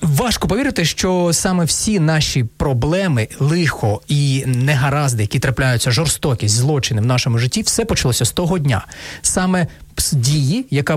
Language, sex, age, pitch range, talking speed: Ukrainian, male, 30-49, 125-170 Hz, 135 wpm